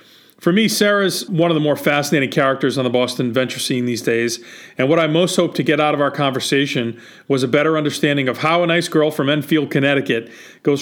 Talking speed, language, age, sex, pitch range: 220 wpm, English, 40-59, male, 130-160 Hz